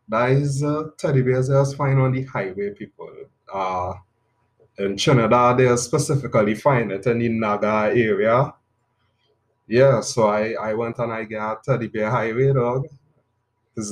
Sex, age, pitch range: male, 20-39, 115-140 Hz